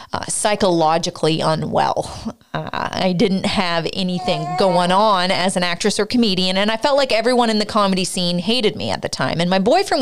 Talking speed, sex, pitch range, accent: 190 wpm, female, 170-230 Hz, American